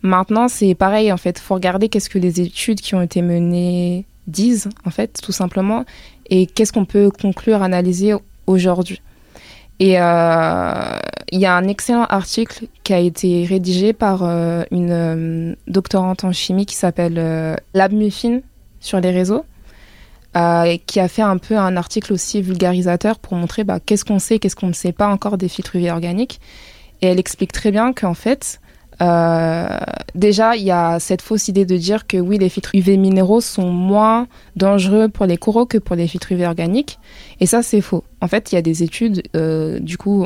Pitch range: 175-205 Hz